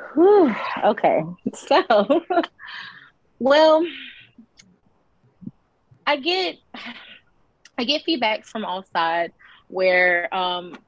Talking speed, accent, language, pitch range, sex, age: 75 wpm, American, English, 185-230 Hz, female, 20-39